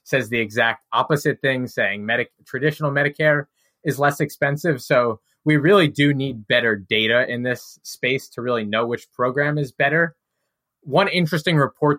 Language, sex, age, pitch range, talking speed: English, male, 20-39, 120-145 Hz, 155 wpm